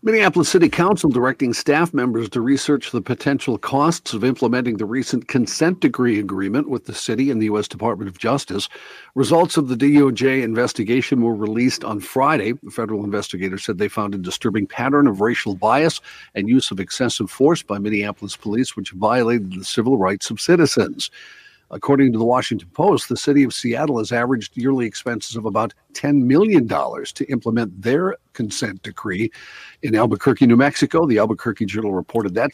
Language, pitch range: English, 110-140 Hz